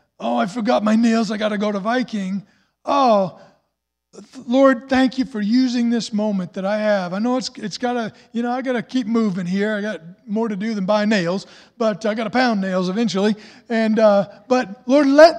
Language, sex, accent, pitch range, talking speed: English, male, American, 200-270 Hz, 220 wpm